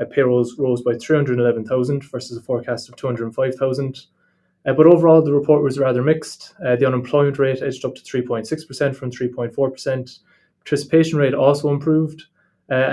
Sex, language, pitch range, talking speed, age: male, English, 120-140 Hz, 155 wpm, 20-39